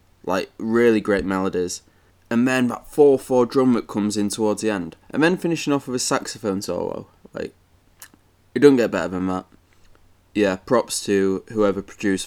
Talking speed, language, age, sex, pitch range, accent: 175 wpm, English, 20-39, male, 95-110 Hz, British